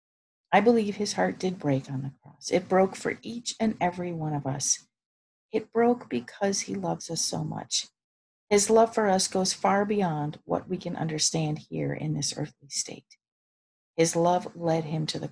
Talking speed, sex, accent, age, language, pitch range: 190 wpm, female, American, 50-69, English, 145-200 Hz